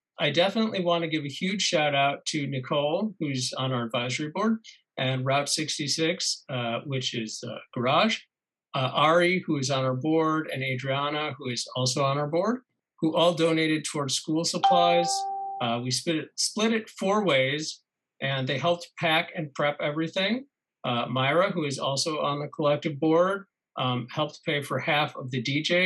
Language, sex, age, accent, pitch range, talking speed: English, male, 50-69, American, 135-170 Hz, 175 wpm